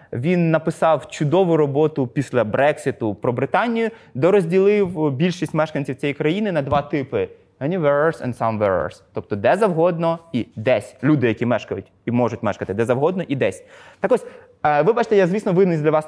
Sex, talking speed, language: male, 155 wpm, Ukrainian